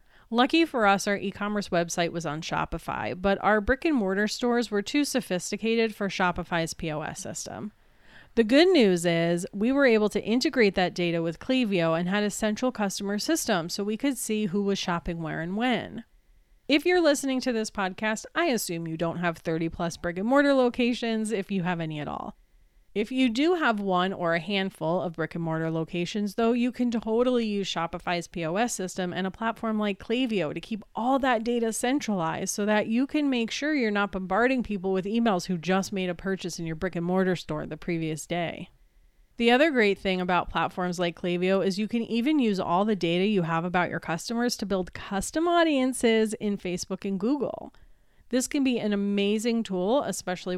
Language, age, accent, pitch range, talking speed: English, 30-49, American, 175-235 Hz, 195 wpm